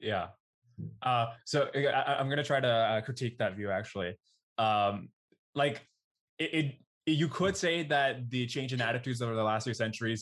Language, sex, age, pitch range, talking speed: English, male, 20-39, 110-130 Hz, 175 wpm